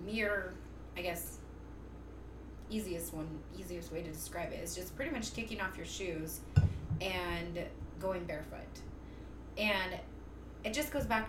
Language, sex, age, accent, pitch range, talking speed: English, female, 20-39, American, 175-220 Hz, 140 wpm